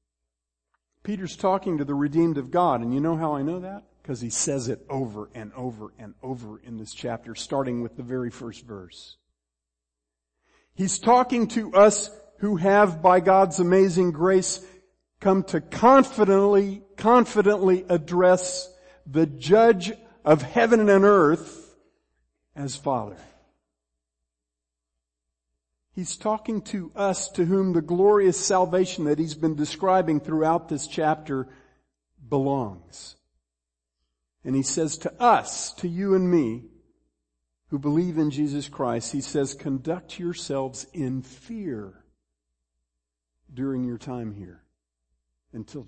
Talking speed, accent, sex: 125 wpm, American, male